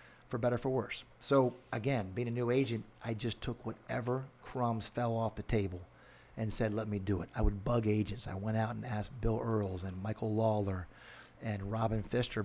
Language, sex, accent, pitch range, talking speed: English, male, American, 110-125 Hz, 200 wpm